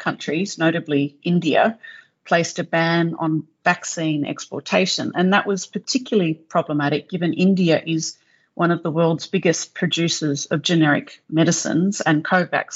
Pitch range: 150-175 Hz